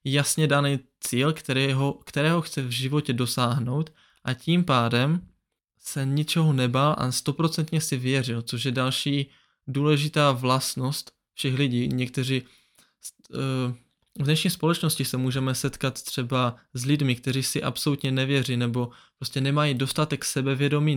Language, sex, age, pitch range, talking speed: Czech, male, 20-39, 125-150 Hz, 130 wpm